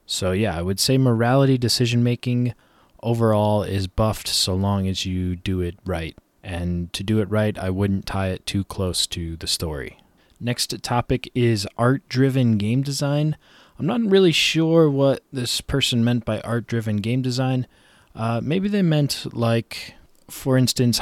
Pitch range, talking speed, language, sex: 95-120 Hz, 160 wpm, English, male